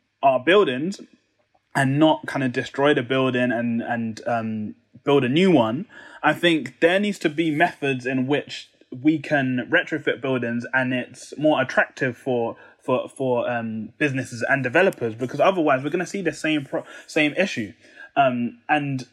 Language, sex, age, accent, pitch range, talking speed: English, male, 20-39, British, 125-165 Hz, 165 wpm